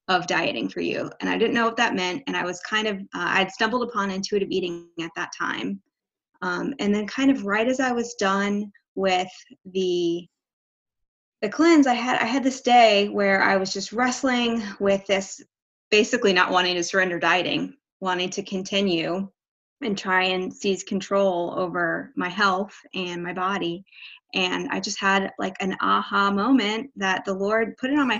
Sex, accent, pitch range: female, American, 190-240 Hz